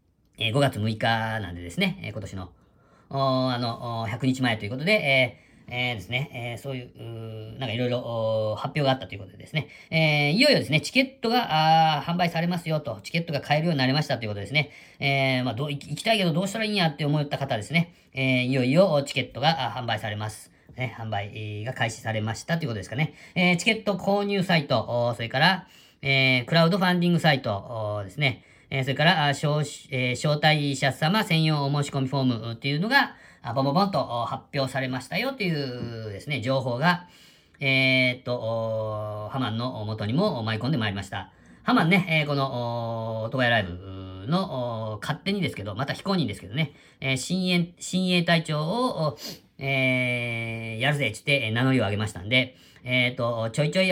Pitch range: 115-155 Hz